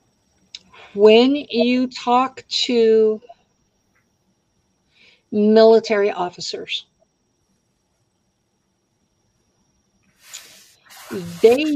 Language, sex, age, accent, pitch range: English, female, 60-79, American, 185-240 Hz